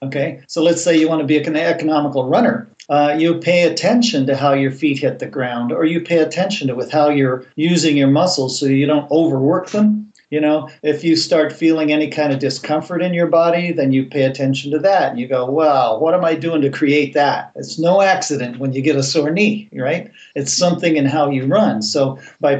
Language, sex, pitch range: English, male, 140-165 Hz